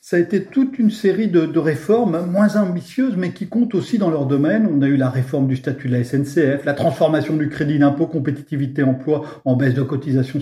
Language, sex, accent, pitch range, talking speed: French, male, French, 140-170 Hz, 225 wpm